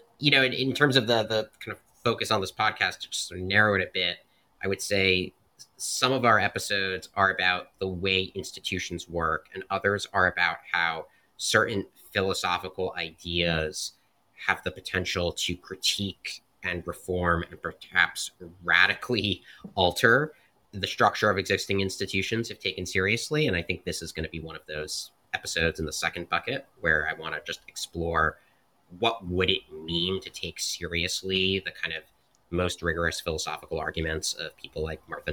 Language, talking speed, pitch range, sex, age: English, 170 wpm, 85-100 Hz, male, 30-49